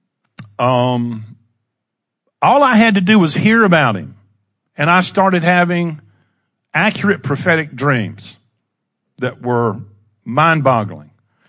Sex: male